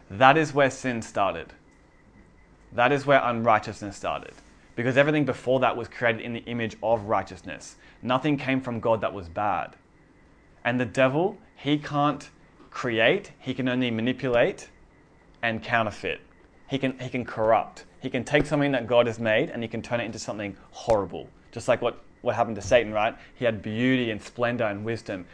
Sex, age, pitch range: male, 20-39, 110-130 Hz